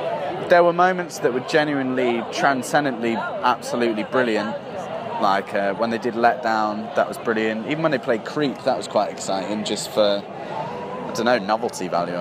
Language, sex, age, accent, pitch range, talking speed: English, male, 20-39, British, 110-135 Hz, 170 wpm